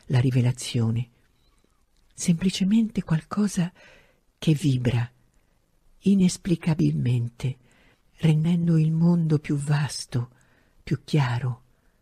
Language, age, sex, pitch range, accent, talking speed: Italian, 50-69, female, 125-160 Hz, native, 70 wpm